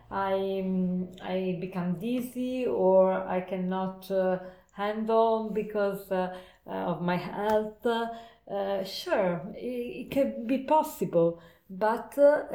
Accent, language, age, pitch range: Italian, English, 50-69, 195-245 Hz